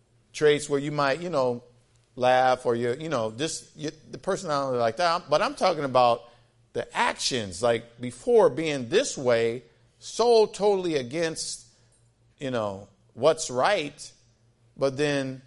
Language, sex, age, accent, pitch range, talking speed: English, male, 50-69, American, 120-150 Hz, 140 wpm